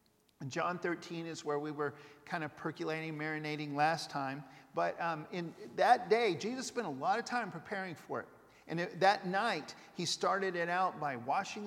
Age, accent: 50-69, American